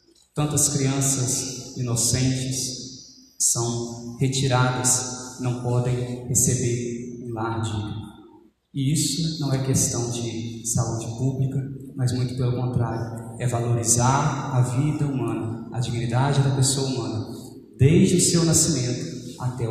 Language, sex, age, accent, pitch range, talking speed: Portuguese, male, 20-39, Brazilian, 125-150 Hz, 115 wpm